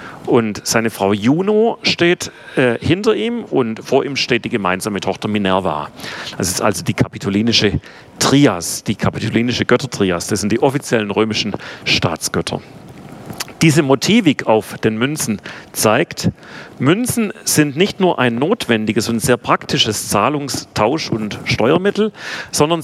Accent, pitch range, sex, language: German, 110-155 Hz, male, German